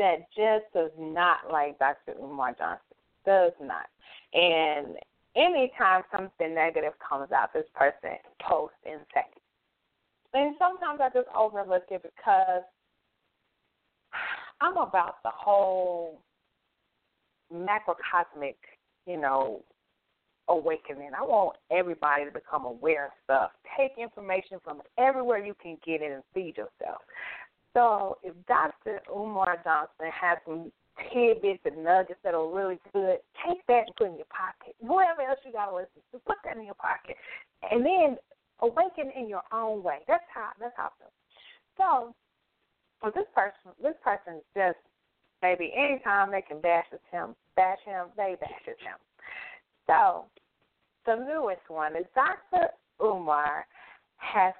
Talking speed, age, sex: 140 wpm, 30-49, female